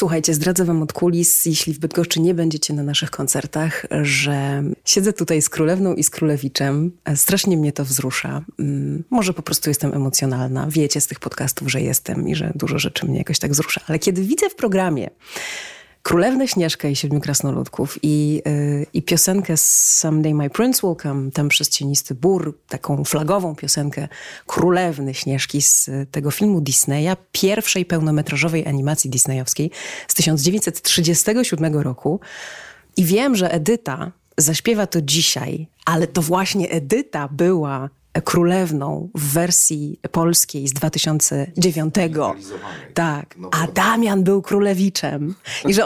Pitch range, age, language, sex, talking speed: 145-185 Hz, 30-49, Polish, female, 145 wpm